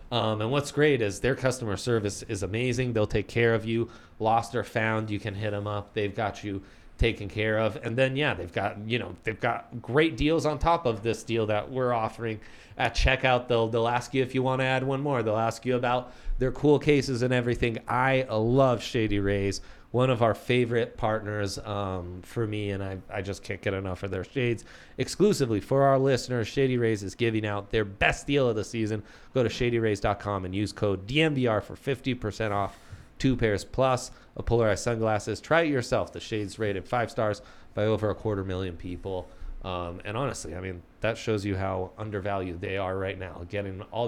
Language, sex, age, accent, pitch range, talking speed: English, male, 30-49, American, 100-125 Hz, 210 wpm